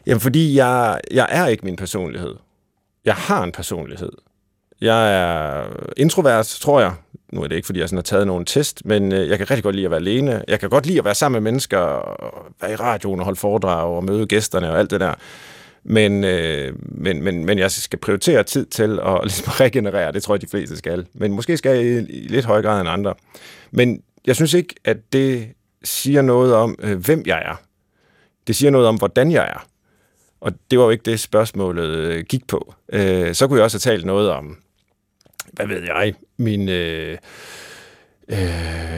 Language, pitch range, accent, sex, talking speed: Danish, 95-125 Hz, native, male, 200 wpm